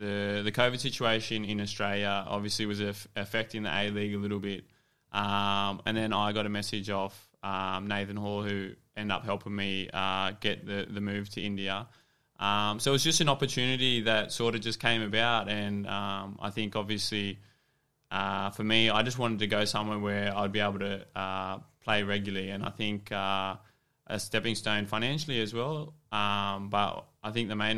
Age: 20-39